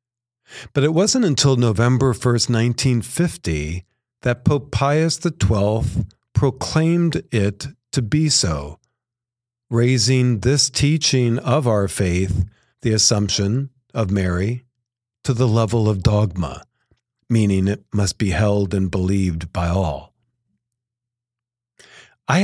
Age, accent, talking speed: 50-69, American, 110 wpm